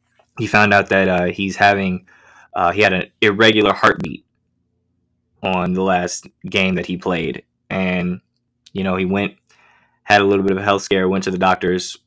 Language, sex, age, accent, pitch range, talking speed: English, male, 20-39, American, 90-110 Hz, 185 wpm